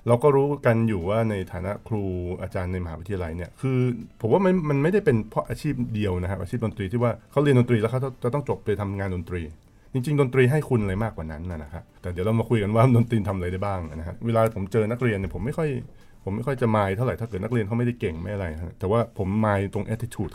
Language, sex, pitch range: Thai, male, 95-120 Hz